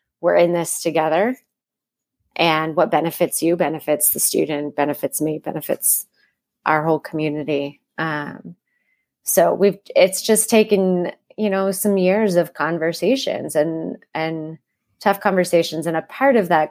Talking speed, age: 135 wpm, 30-49